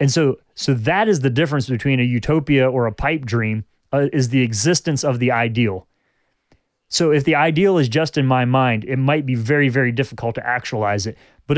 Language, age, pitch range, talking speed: English, 30-49, 120-145 Hz, 205 wpm